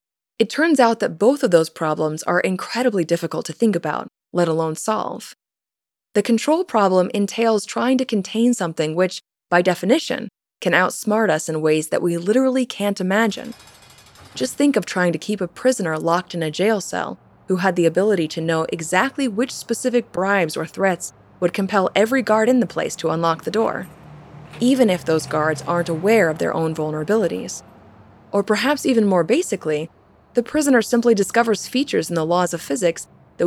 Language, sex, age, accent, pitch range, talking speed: English, female, 20-39, American, 165-225 Hz, 180 wpm